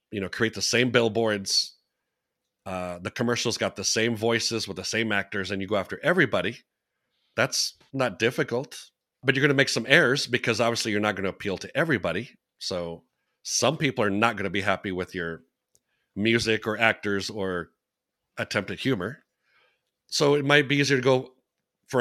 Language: English